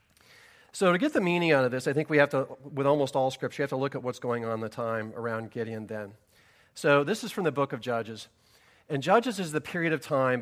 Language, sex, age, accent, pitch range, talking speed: English, male, 40-59, American, 115-140 Hz, 265 wpm